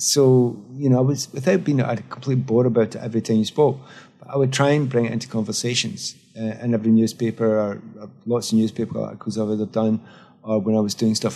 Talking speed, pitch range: 245 wpm, 110-135 Hz